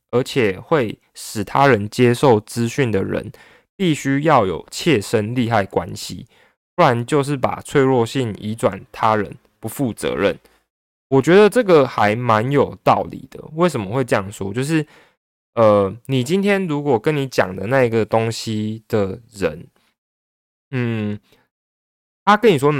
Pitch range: 105-145 Hz